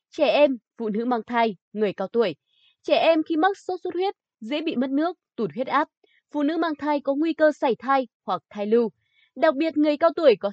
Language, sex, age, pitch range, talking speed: Vietnamese, female, 20-39, 235-325 Hz, 235 wpm